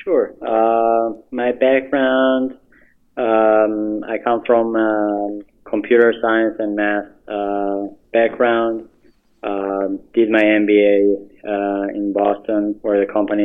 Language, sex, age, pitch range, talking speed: English, male, 20-39, 100-110 Hz, 115 wpm